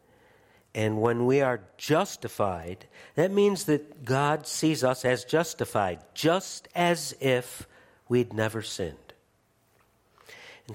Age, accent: 60-79, American